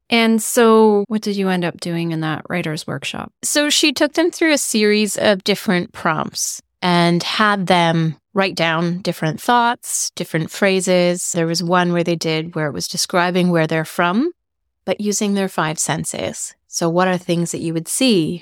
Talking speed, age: 185 wpm, 30-49